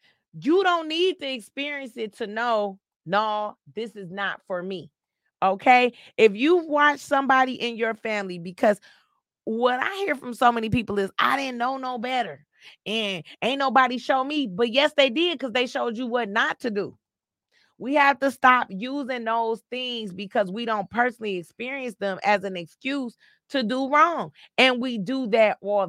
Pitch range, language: 210-270 Hz, English